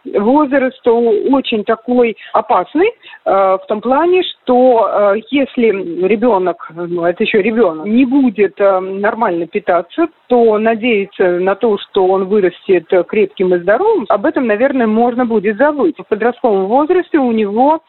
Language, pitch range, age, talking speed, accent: Russian, 200-275 Hz, 50-69, 130 wpm, native